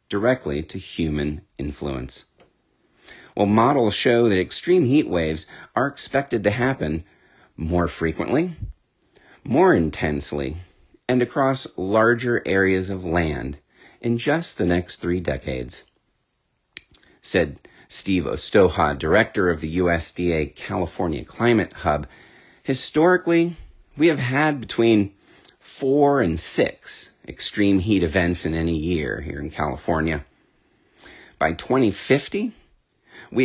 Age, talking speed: 40-59, 110 wpm